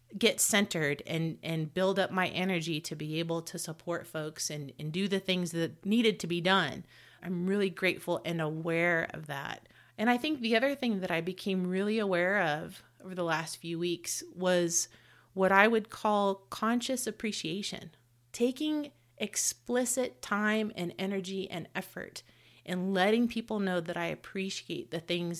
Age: 30-49